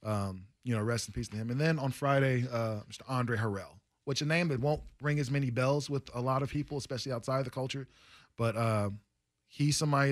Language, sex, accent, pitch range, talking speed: English, male, American, 110-130 Hz, 225 wpm